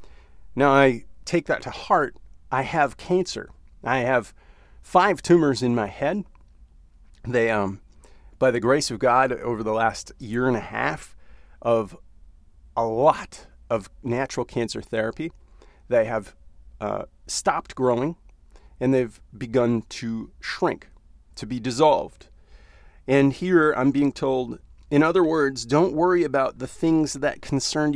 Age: 40-59